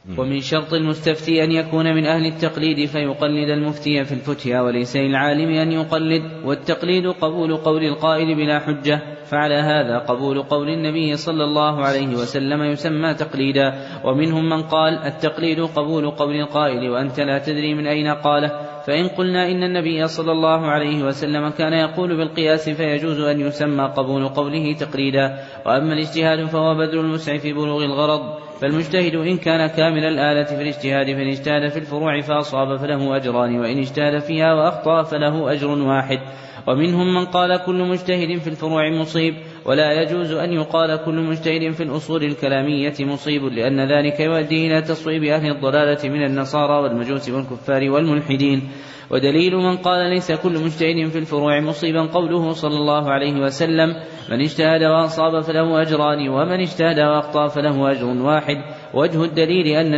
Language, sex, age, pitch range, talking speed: Arabic, male, 20-39, 140-160 Hz, 150 wpm